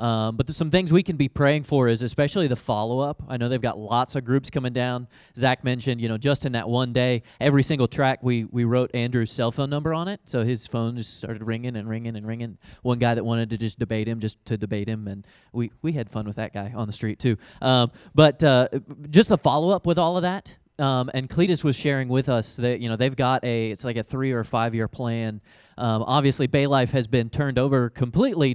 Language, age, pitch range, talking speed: English, 20-39, 115-140 Hz, 250 wpm